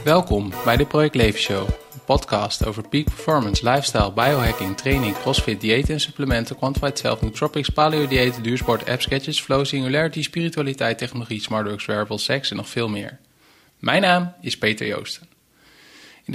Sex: male